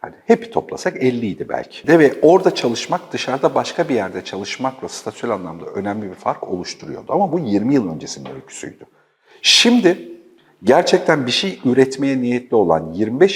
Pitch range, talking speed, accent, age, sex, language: 120-185 Hz, 155 wpm, native, 50-69, male, Turkish